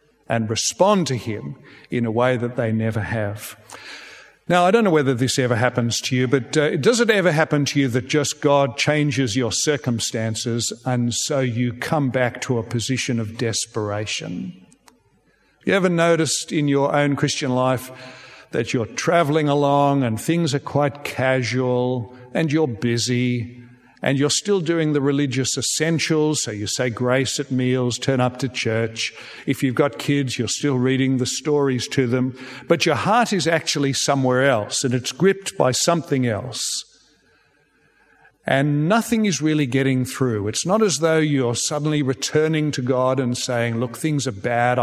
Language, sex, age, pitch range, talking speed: English, male, 60-79, 125-150 Hz, 170 wpm